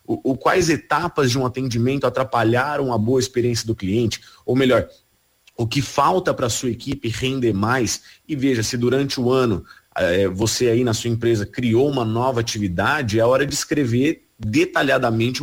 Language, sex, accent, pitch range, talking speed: Portuguese, male, Brazilian, 115-140 Hz, 165 wpm